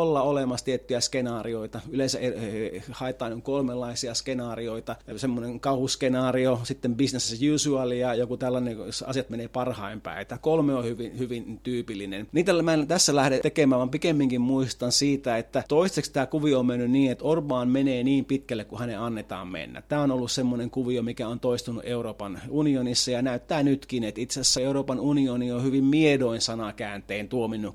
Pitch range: 120-140 Hz